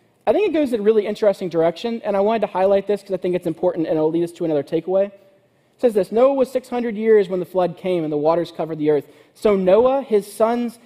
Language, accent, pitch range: English, American, 165-220 Hz